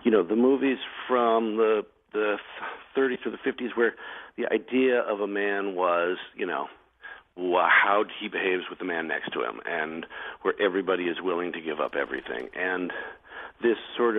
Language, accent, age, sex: English, American, 50-69, male